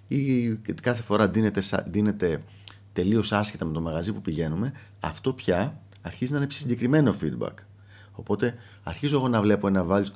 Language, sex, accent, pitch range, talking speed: Greek, male, native, 95-120 Hz, 150 wpm